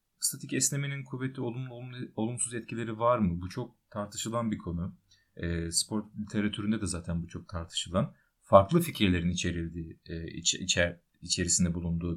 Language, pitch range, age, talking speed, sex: Turkish, 90-140 Hz, 30-49, 145 wpm, male